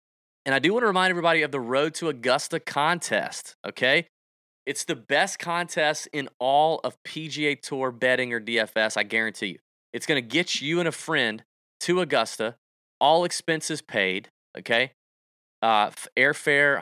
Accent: American